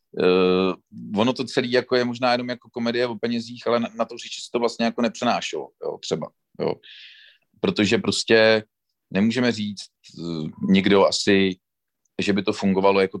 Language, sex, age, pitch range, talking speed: Czech, male, 40-59, 100-120 Hz, 170 wpm